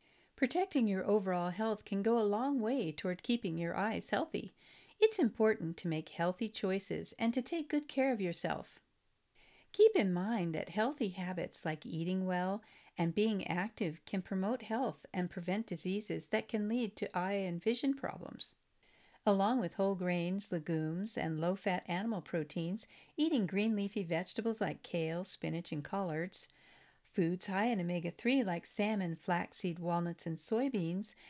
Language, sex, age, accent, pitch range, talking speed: English, female, 50-69, American, 175-230 Hz, 155 wpm